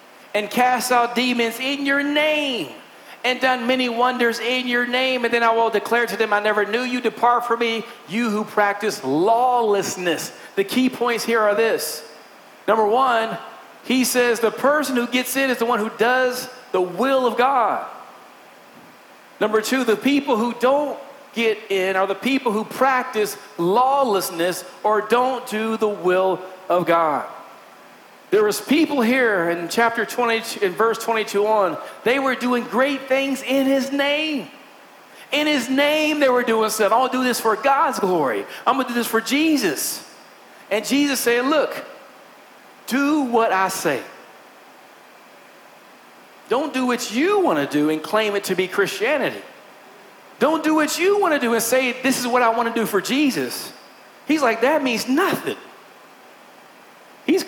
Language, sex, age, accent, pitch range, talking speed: English, male, 40-59, American, 215-265 Hz, 170 wpm